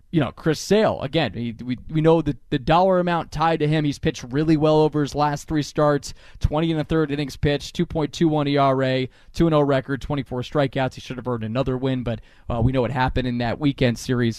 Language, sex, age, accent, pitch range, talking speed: English, male, 20-39, American, 130-170 Hz, 245 wpm